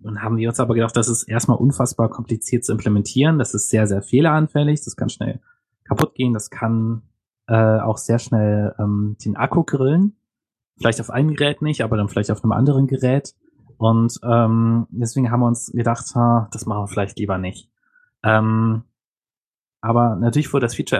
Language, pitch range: German, 110-130 Hz